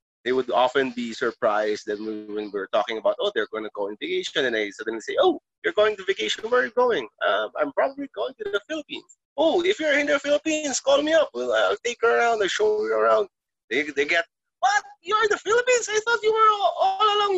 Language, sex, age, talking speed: English, male, 20-39, 245 wpm